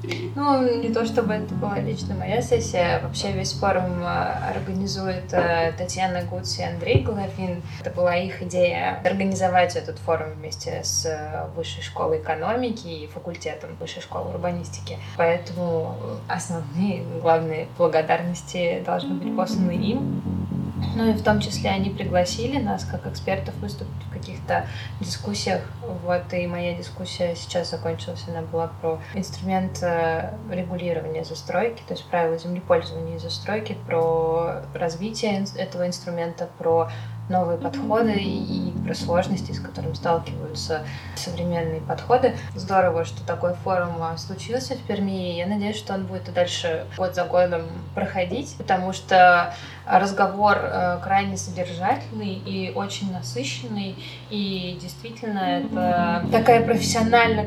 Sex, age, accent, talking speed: female, 20-39, native, 125 wpm